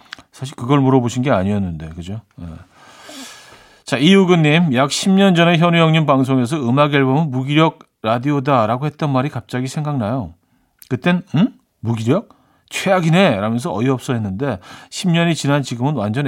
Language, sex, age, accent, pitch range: Korean, male, 40-59, native, 110-160 Hz